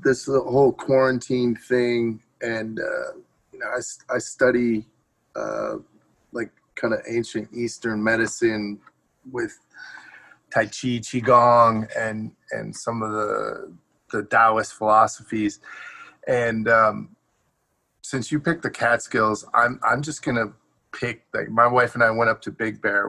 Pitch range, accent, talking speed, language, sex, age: 105-115 Hz, American, 140 wpm, English, male, 30-49